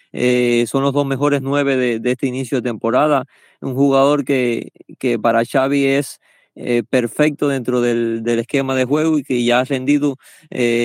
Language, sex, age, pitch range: Spanish, male, 20-39, 120-140 Hz